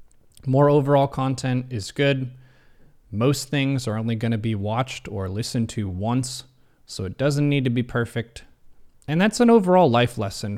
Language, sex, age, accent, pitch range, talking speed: English, male, 30-49, American, 115-145 Hz, 170 wpm